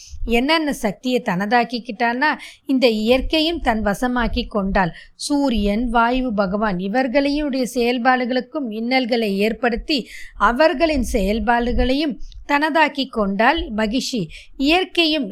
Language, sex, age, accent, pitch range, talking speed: Tamil, female, 20-39, native, 210-275 Hz, 80 wpm